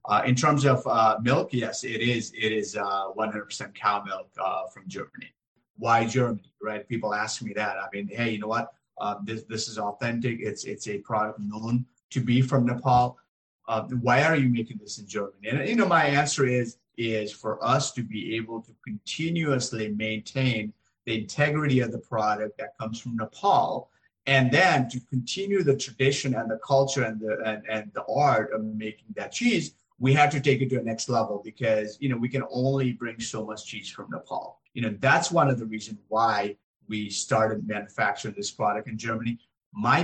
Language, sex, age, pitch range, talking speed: English, male, 30-49, 110-130 Hz, 200 wpm